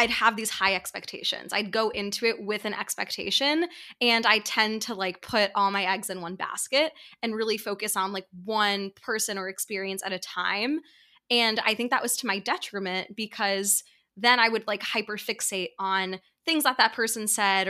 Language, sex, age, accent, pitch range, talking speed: English, female, 20-39, American, 190-225 Hz, 195 wpm